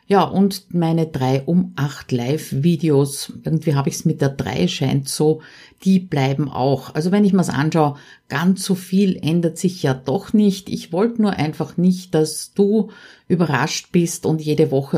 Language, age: German, 50-69